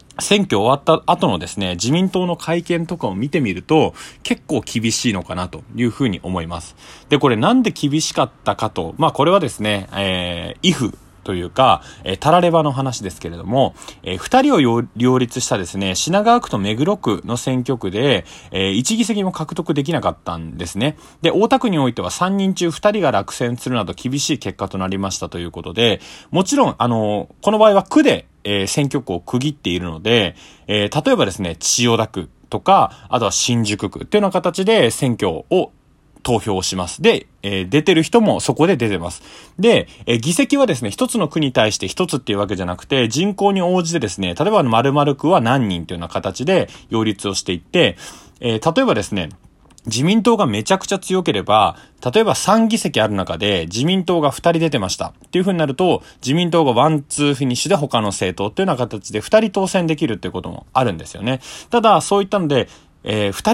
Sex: male